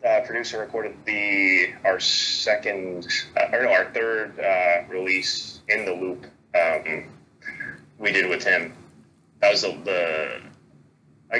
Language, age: English, 20-39